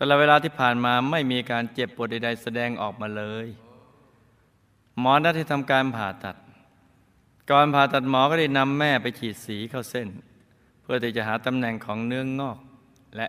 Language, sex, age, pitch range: Thai, male, 20-39, 105-125 Hz